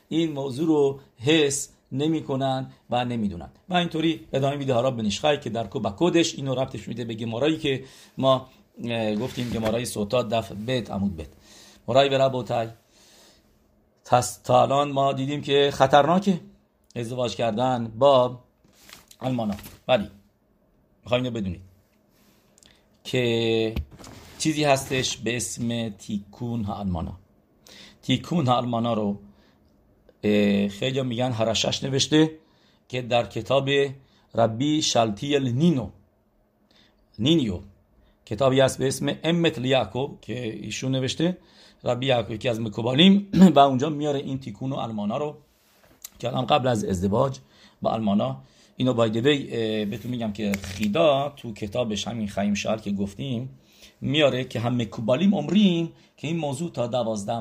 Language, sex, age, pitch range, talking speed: English, male, 50-69, 105-135 Hz, 125 wpm